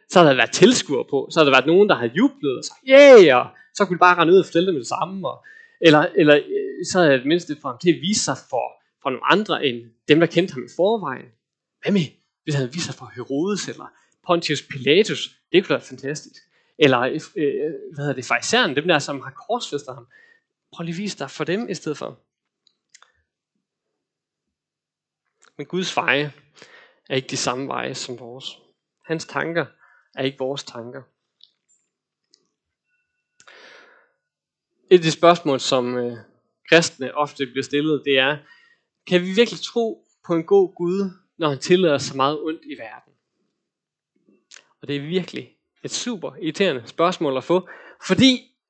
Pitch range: 140-205 Hz